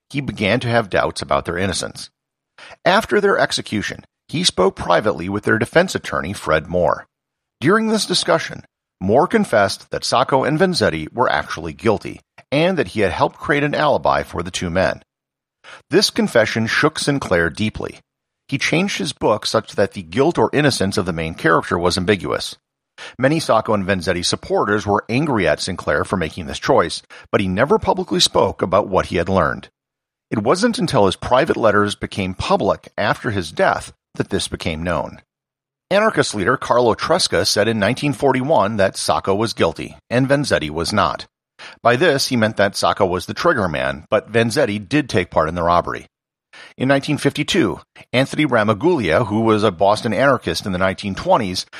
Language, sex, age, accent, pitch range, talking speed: English, male, 50-69, American, 95-140 Hz, 170 wpm